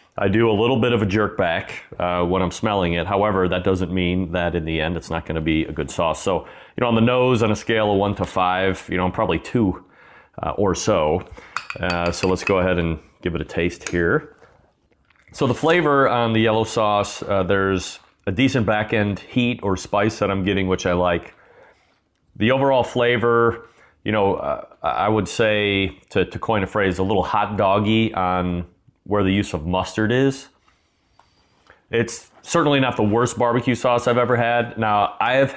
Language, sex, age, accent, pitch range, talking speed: English, male, 30-49, American, 90-115 Hz, 205 wpm